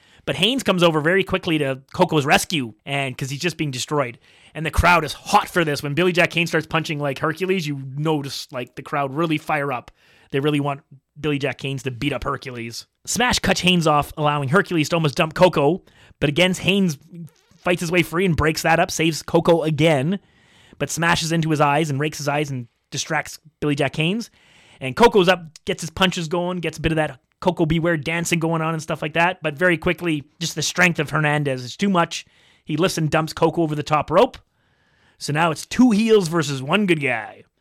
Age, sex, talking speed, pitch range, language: 30-49, male, 215 wpm, 145-175 Hz, English